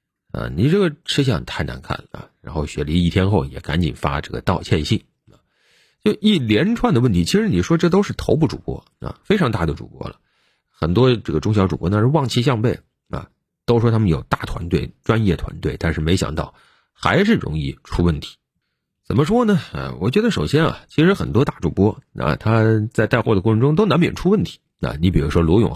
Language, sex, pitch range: Chinese, male, 85-135 Hz